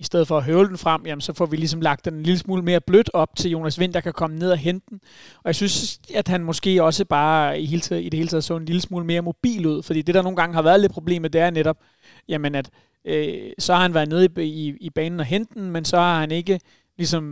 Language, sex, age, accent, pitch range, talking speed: Danish, male, 30-49, native, 155-180 Hz, 290 wpm